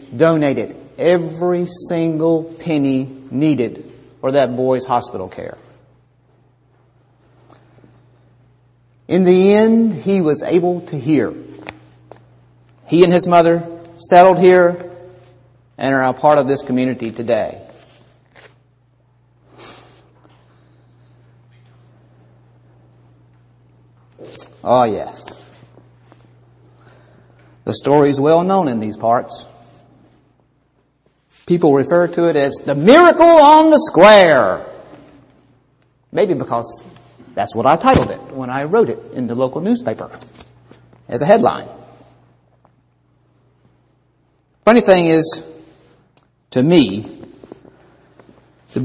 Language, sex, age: English, male, 40-59